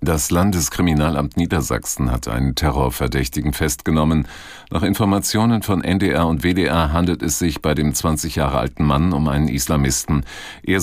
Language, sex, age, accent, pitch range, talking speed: German, male, 50-69, German, 75-90 Hz, 145 wpm